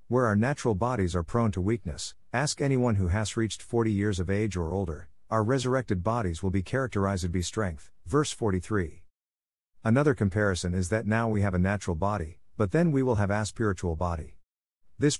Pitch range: 90-115 Hz